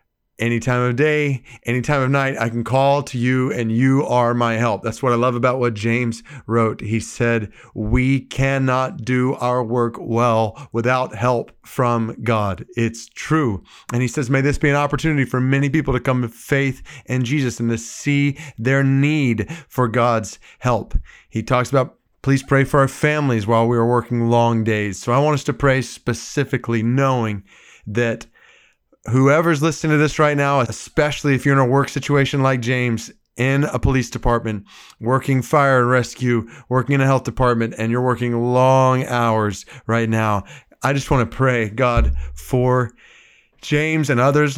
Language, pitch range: English, 115-135 Hz